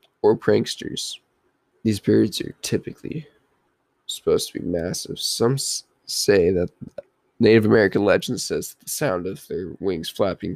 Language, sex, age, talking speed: English, male, 20-39, 130 wpm